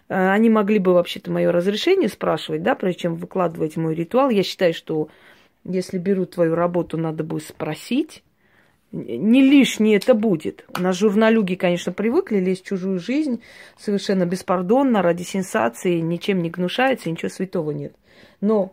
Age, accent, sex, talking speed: 30-49, native, female, 145 wpm